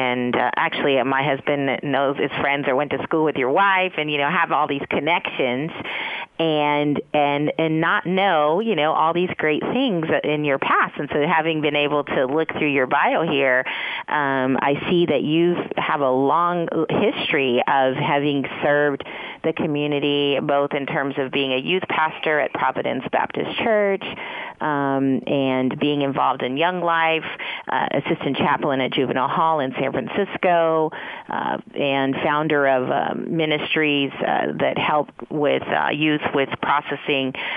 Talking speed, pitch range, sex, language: 165 wpm, 135-155 Hz, female, English